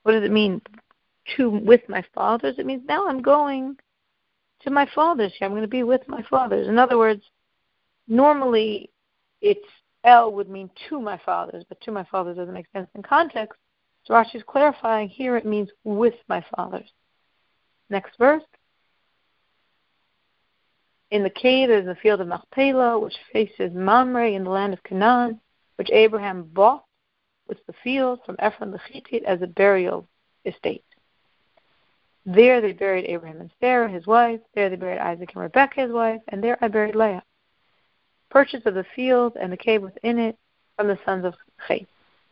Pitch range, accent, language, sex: 195-245 Hz, American, English, female